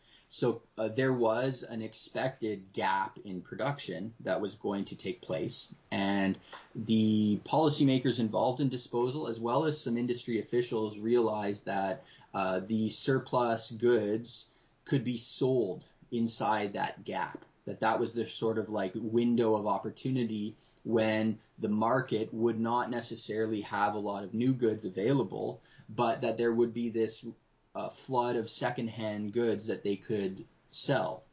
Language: English